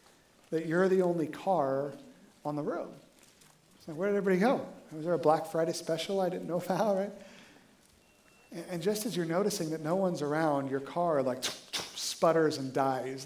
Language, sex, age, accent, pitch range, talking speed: English, male, 40-59, American, 155-205 Hz, 185 wpm